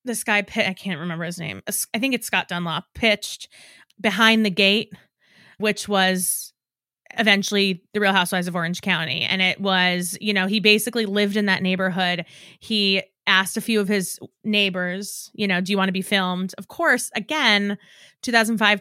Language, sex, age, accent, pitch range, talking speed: English, female, 20-39, American, 185-215 Hz, 175 wpm